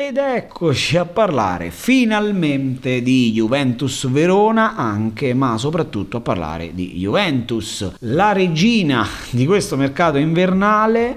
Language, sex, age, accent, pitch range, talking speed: Italian, male, 30-49, native, 100-140 Hz, 115 wpm